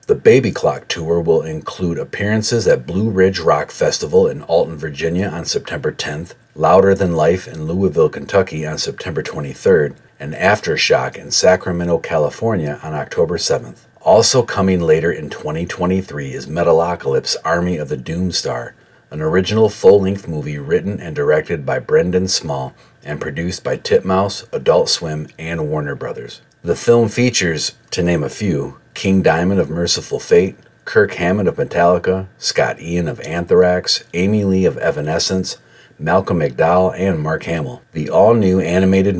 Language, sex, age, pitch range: English, male, 40-59, 85-105 Hz